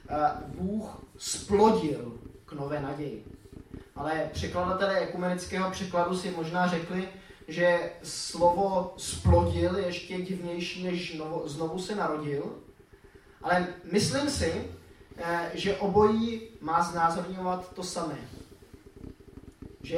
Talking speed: 95 wpm